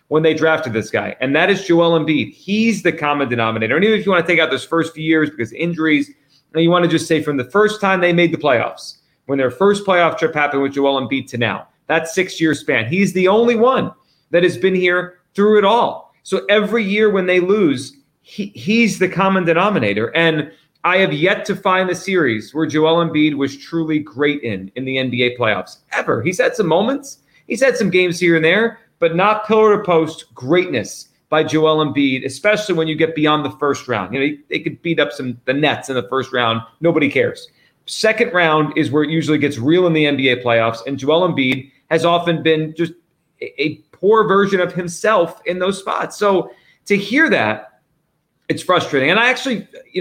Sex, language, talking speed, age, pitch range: male, English, 215 wpm, 30-49, 140-185 Hz